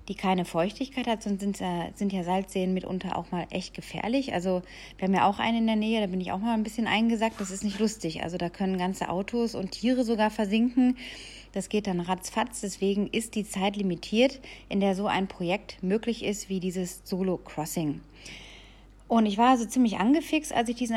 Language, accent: German, German